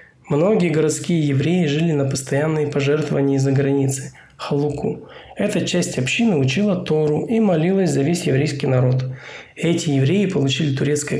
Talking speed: 135 wpm